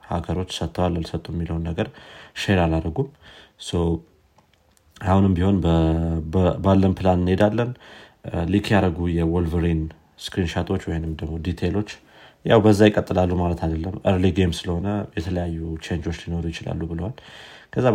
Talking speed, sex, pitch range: 120 wpm, male, 80-95 Hz